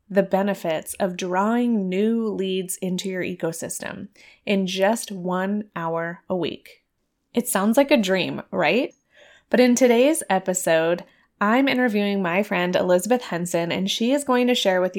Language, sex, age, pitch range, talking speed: English, female, 20-39, 185-230 Hz, 150 wpm